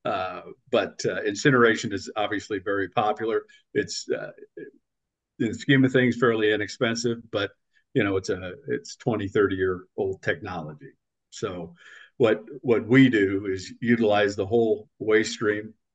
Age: 50-69